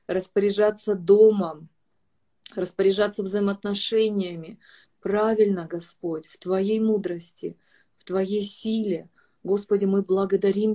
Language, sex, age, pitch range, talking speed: Russian, female, 30-49, 180-205 Hz, 85 wpm